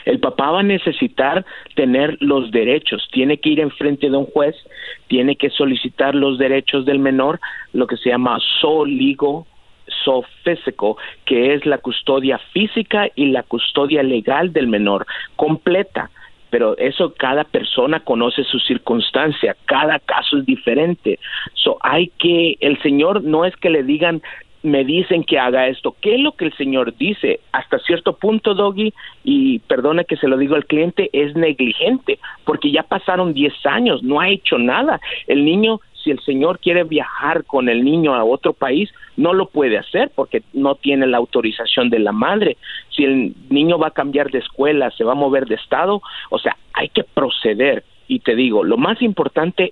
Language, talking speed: Spanish, 175 wpm